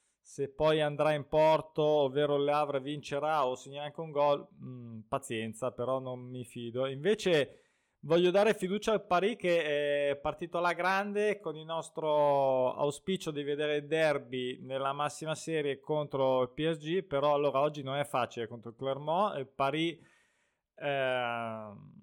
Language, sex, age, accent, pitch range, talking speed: Italian, male, 20-39, native, 135-160 Hz, 155 wpm